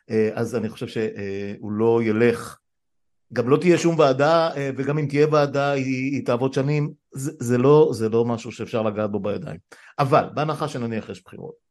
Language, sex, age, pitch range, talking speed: Hebrew, male, 50-69, 110-150 Hz, 175 wpm